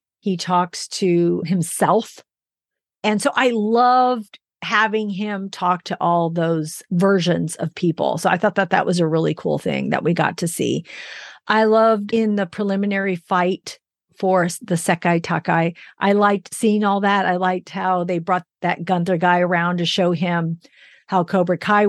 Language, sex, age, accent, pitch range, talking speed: English, female, 40-59, American, 180-220 Hz, 170 wpm